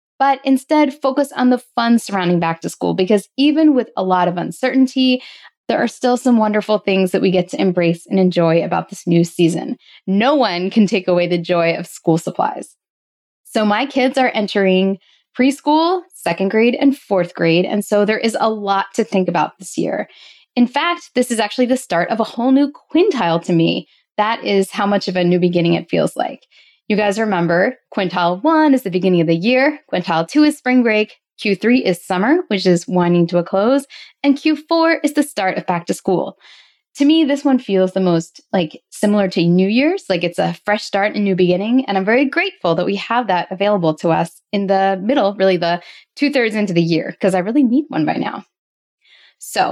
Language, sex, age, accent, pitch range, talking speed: English, female, 10-29, American, 180-255 Hz, 210 wpm